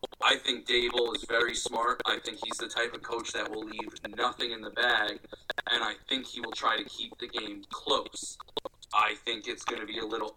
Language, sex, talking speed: English, male, 225 wpm